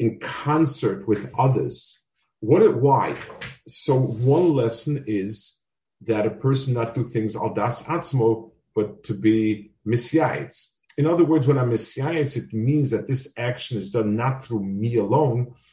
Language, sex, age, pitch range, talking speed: English, male, 50-69, 115-150 Hz, 155 wpm